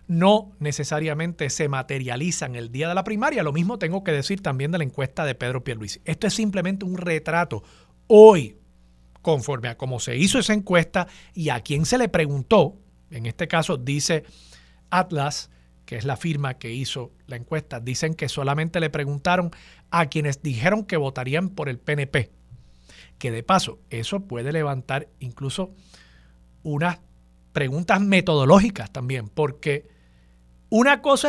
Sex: male